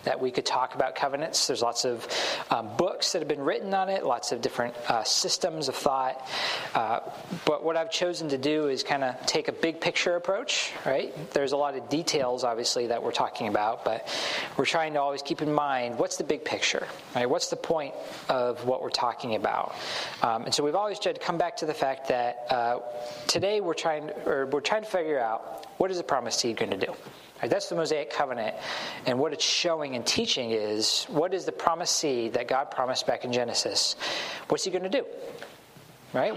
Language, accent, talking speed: English, American, 215 wpm